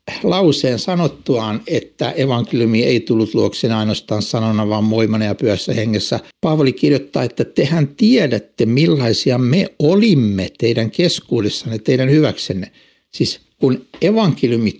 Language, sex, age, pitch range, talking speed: Finnish, male, 60-79, 110-165 Hz, 115 wpm